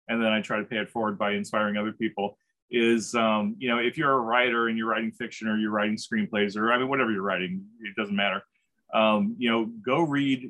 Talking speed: 240 wpm